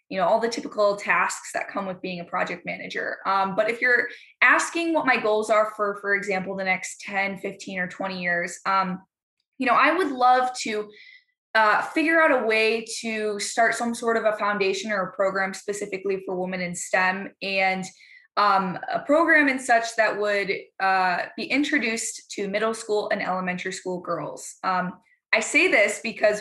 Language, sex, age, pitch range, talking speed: English, female, 20-39, 195-250 Hz, 185 wpm